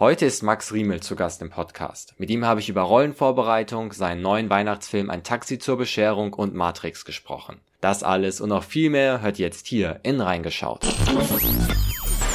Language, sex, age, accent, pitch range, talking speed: German, male, 20-39, German, 95-120 Hz, 175 wpm